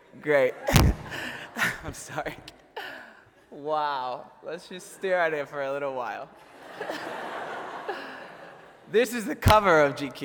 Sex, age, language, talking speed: male, 20-39, English, 110 wpm